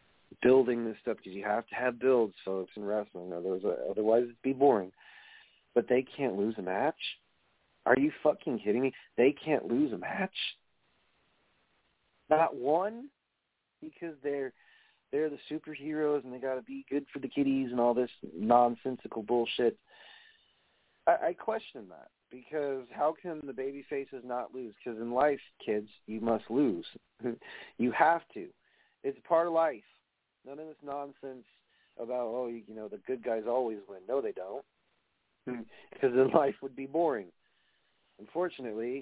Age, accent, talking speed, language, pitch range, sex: 40-59, American, 160 wpm, English, 115-150 Hz, male